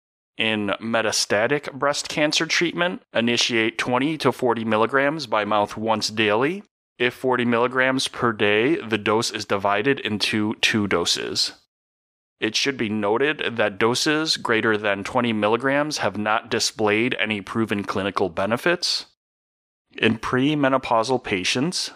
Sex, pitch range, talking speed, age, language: male, 105-130 Hz, 125 wpm, 30-49, English